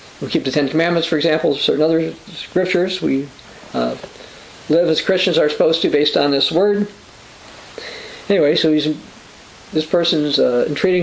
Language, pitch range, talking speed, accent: English, 155-215 Hz, 150 wpm, American